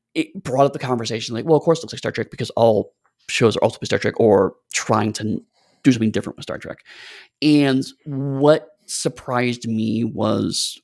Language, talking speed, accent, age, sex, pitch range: English, 195 wpm, American, 30-49, male, 110-140 Hz